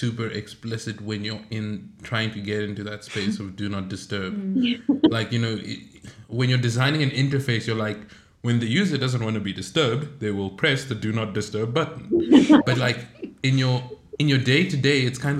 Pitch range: 105-125 Hz